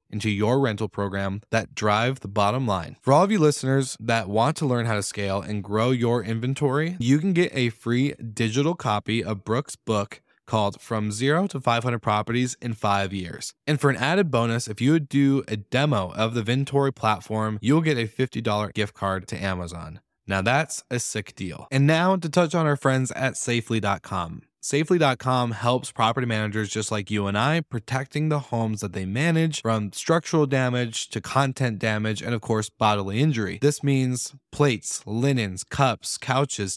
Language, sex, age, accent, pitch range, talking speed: English, male, 20-39, American, 105-135 Hz, 185 wpm